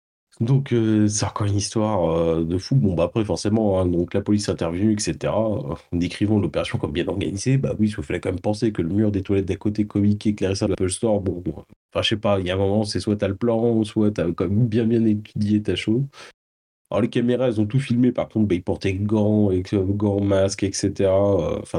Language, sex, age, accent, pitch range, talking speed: French, male, 30-49, French, 95-115 Hz, 255 wpm